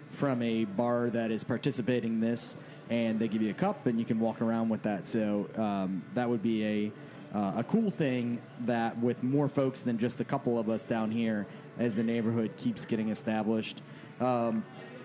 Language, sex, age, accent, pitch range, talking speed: English, male, 30-49, American, 115-140 Hz, 200 wpm